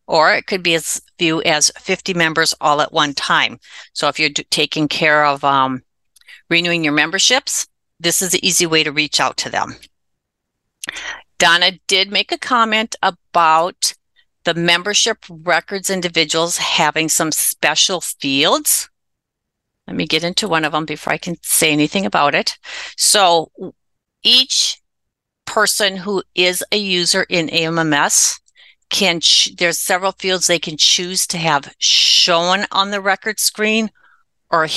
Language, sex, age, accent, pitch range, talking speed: English, female, 50-69, American, 160-200 Hz, 150 wpm